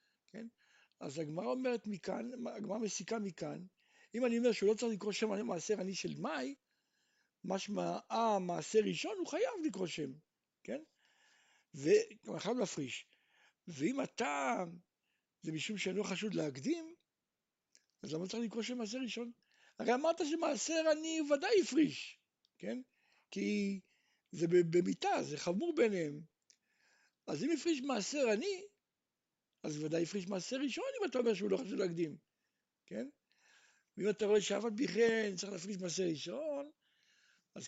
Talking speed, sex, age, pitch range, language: 85 wpm, male, 60-79, 185-300 Hz, Hebrew